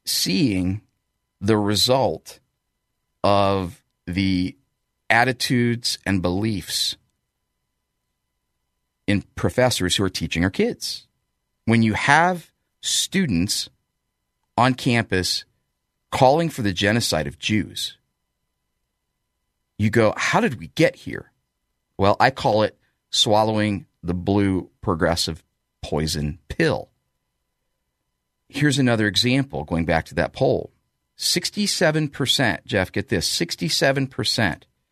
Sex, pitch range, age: male, 80-120 Hz, 40-59